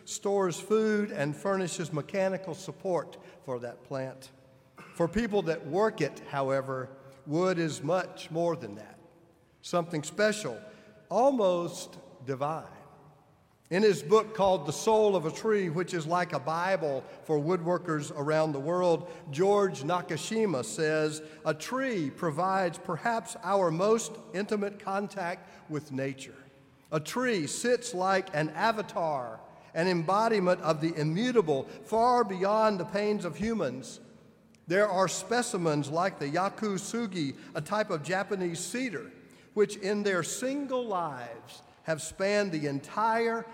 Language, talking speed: English, 130 wpm